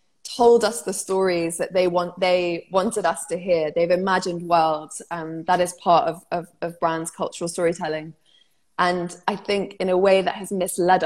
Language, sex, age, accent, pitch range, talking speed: English, female, 20-39, British, 165-195 Hz, 185 wpm